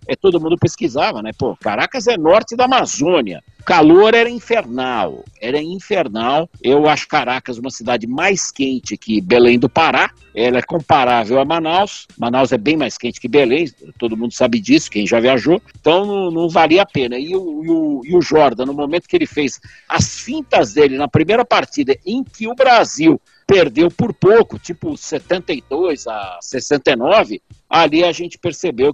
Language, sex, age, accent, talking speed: Portuguese, male, 60-79, Brazilian, 175 wpm